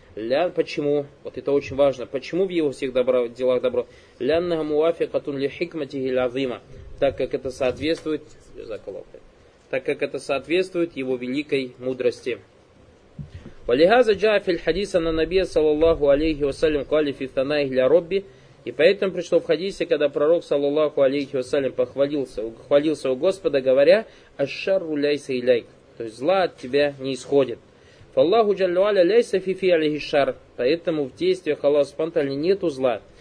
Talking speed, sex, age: 100 wpm, male, 20-39